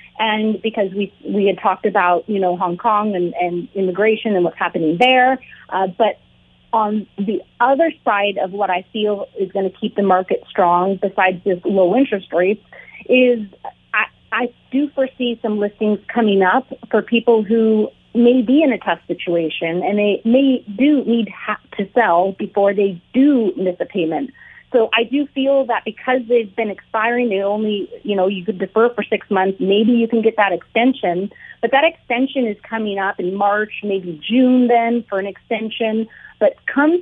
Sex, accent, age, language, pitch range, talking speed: female, American, 30-49, English, 195-245 Hz, 185 wpm